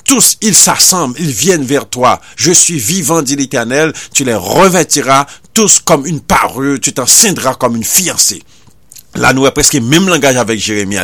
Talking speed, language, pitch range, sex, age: 175 wpm, French, 130-195 Hz, male, 50-69